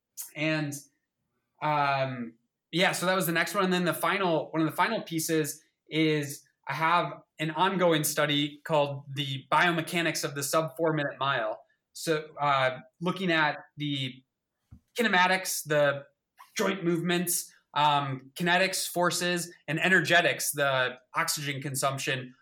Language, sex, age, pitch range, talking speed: English, male, 20-39, 140-175 Hz, 135 wpm